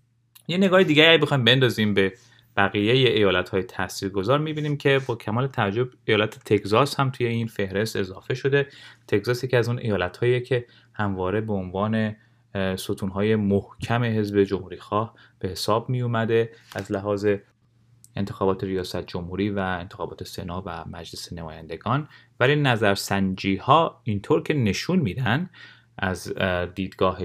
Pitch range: 95-120 Hz